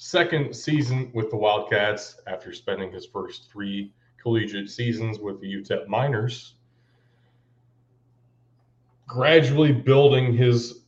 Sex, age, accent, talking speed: male, 30-49, American, 105 wpm